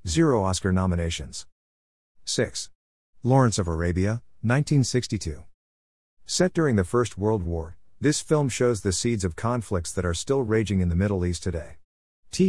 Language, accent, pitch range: English, American, 85-115 Hz